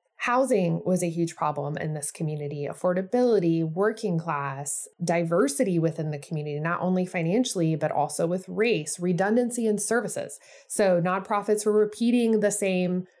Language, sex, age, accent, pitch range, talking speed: English, female, 20-39, American, 165-205 Hz, 140 wpm